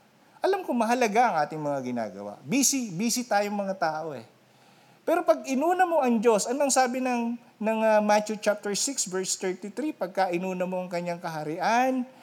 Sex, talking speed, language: male, 160 wpm, Filipino